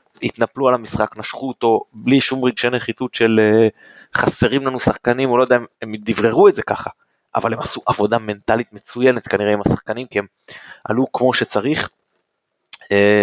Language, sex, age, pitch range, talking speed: Hebrew, male, 20-39, 105-125 Hz, 170 wpm